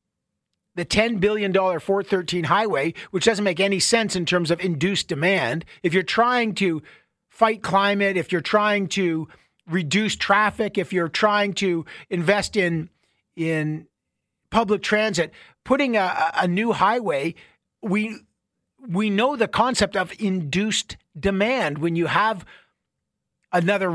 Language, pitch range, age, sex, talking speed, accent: English, 180-225 Hz, 50-69, male, 135 wpm, American